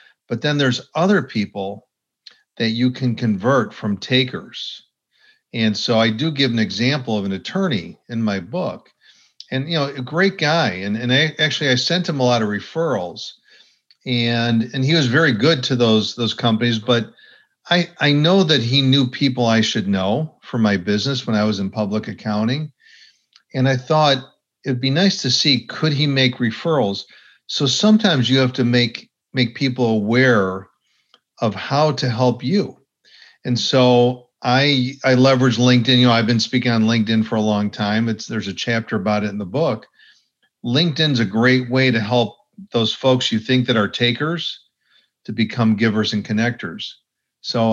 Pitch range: 110-135 Hz